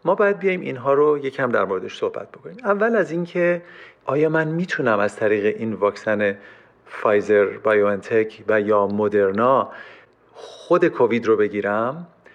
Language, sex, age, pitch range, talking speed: Persian, male, 40-59, 115-185 Hz, 150 wpm